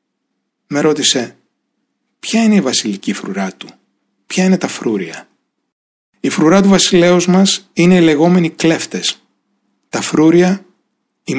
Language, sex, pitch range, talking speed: Greek, male, 140-190 Hz, 125 wpm